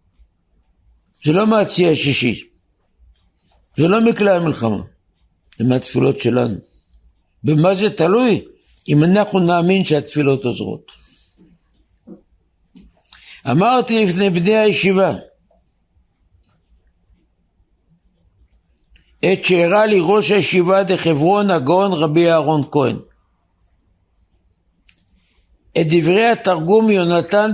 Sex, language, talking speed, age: male, Hebrew, 80 wpm, 60-79